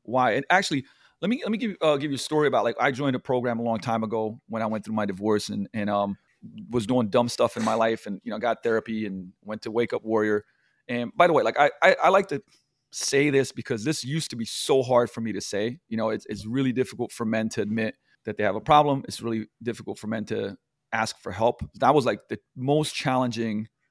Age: 30-49